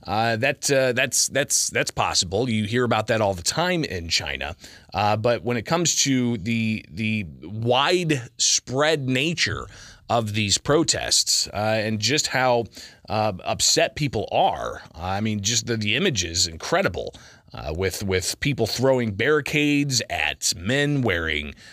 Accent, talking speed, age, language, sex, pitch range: American, 150 wpm, 30-49, English, male, 105-135 Hz